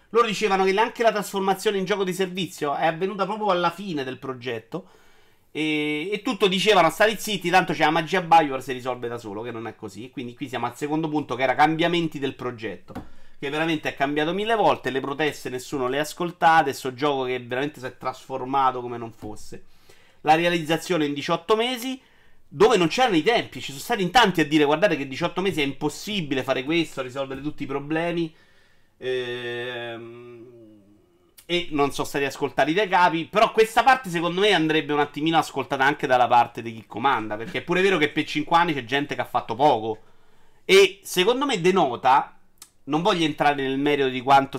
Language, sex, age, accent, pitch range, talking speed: Italian, male, 30-49, native, 130-185 Hz, 195 wpm